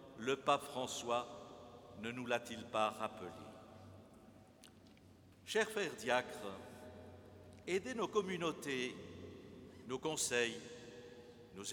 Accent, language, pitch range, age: French, French, 120-175 Hz, 60-79